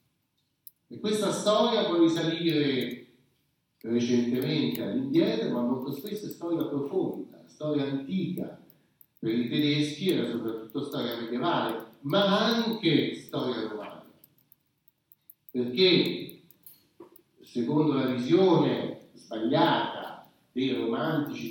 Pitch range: 130-195 Hz